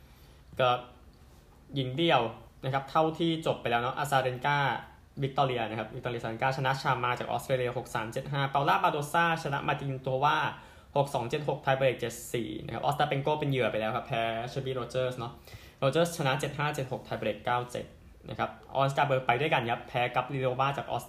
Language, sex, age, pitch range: Thai, male, 10-29, 120-140 Hz